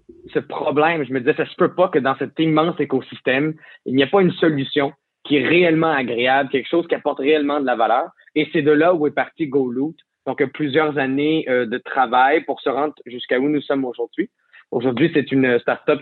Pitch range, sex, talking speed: 130-150 Hz, male, 215 wpm